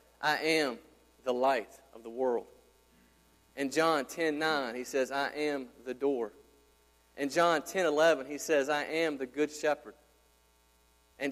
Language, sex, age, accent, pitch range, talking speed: English, male, 30-49, American, 130-175 Hz, 155 wpm